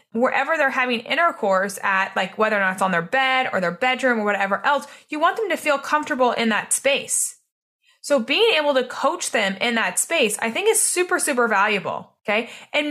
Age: 20-39